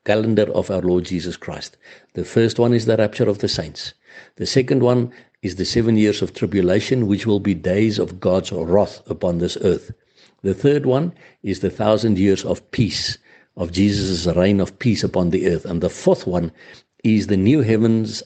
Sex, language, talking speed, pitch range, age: male, English, 195 wpm, 95-120 Hz, 60-79